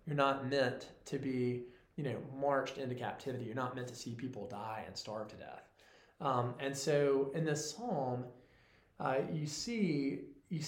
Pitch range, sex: 120-150 Hz, male